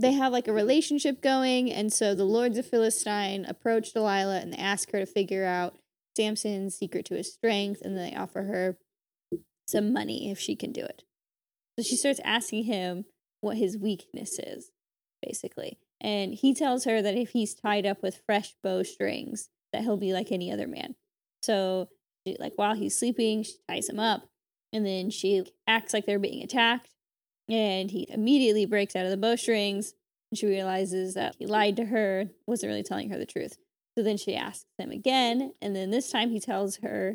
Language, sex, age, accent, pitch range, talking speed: English, female, 20-39, American, 195-240 Hz, 190 wpm